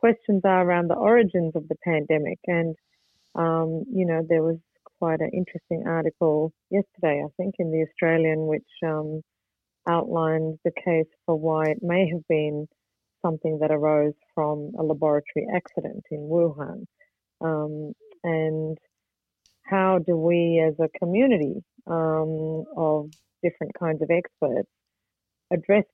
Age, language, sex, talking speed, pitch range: 40-59, English, female, 135 wpm, 155-180 Hz